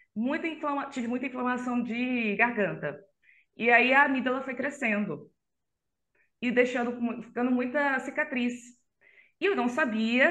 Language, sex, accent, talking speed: Portuguese, female, Brazilian, 130 wpm